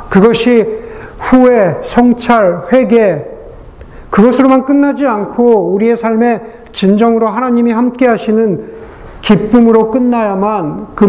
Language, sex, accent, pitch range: Korean, male, native, 185-230 Hz